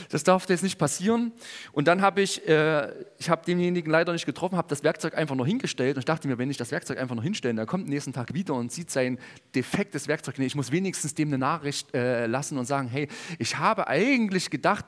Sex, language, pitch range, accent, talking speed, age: male, German, 145-200 Hz, German, 235 wpm, 40-59